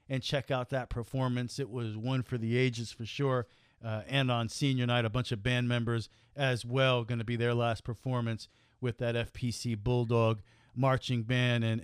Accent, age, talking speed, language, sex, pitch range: American, 40-59, 195 wpm, English, male, 120-155 Hz